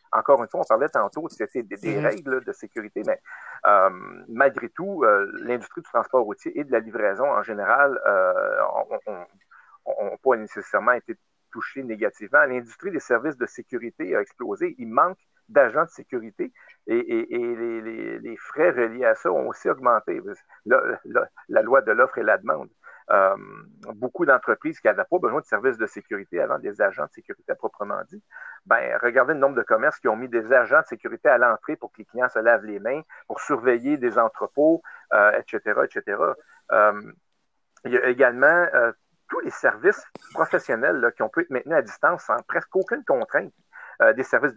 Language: French